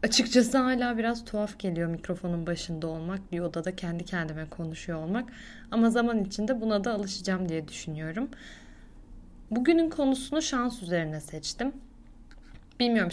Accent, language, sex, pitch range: native, Turkish, female, 185-230 Hz